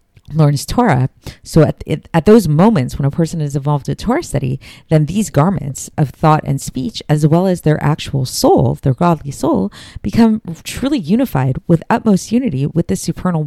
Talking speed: 185 wpm